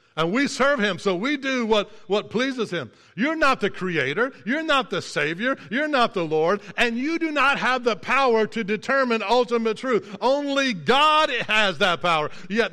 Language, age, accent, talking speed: English, 60-79, American, 190 wpm